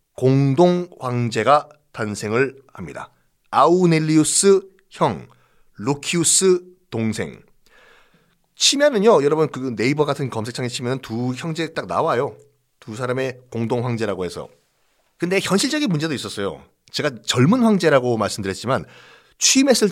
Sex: male